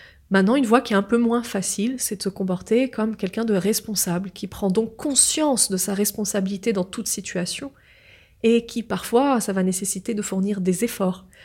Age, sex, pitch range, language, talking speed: 30-49, female, 190-235 Hz, French, 195 wpm